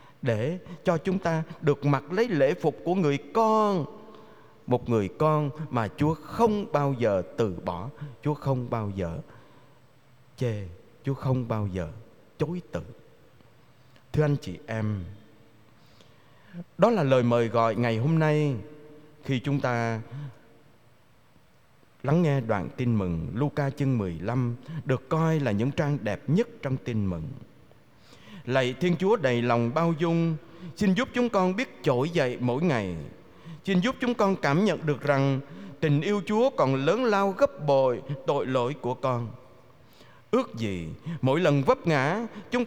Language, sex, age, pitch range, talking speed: Vietnamese, male, 20-39, 120-175 Hz, 155 wpm